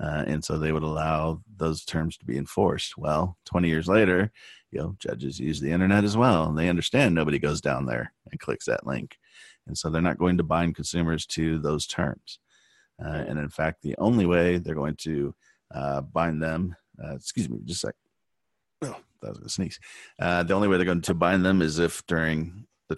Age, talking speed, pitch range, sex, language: 40-59, 215 wpm, 75-85 Hz, male, English